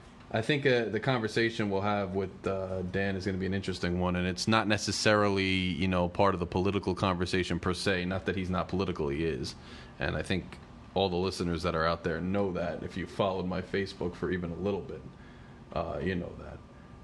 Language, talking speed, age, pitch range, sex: English, 220 wpm, 30-49, 90-110 Hz, male